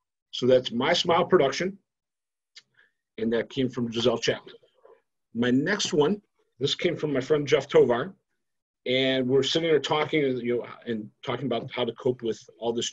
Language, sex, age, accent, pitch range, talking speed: English, male, 50-69, American, 115-160 Hz, 170 wpm